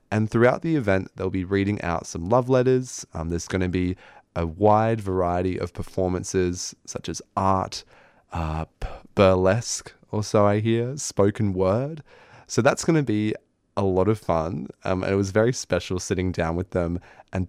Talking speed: 180 wpm